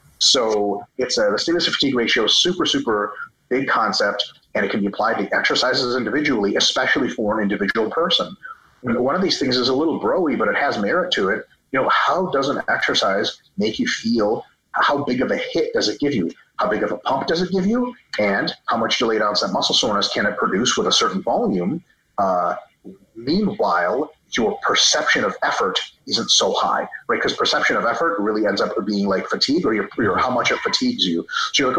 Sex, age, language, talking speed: male, 30-49, Finnish, 210 wpm